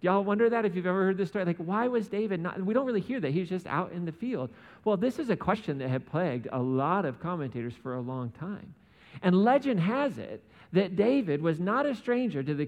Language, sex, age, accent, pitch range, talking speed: English, male, 40-59, American, 140-205 Hz, 265 wpm